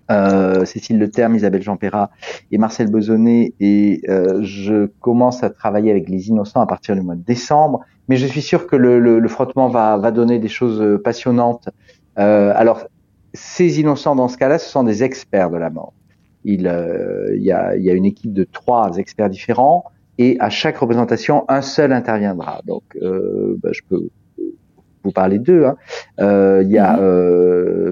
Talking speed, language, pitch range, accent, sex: 190 wpm, French, 100-125 Hz, French, male